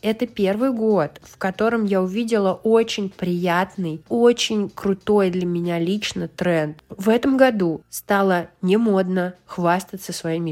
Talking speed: 125 wpm